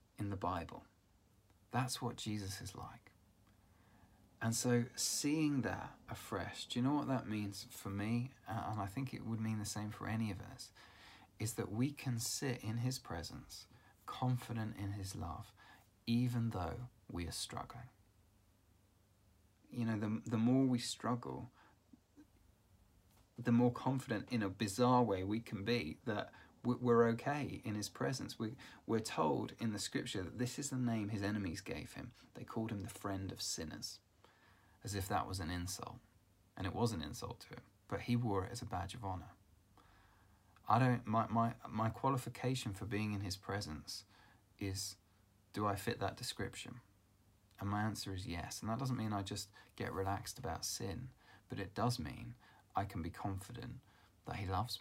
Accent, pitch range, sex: British, 95-120 Hz, male